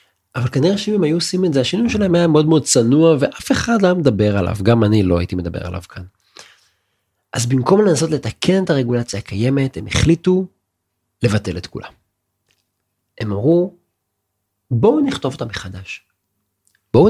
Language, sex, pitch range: Hebrew, male, 100-135 Hz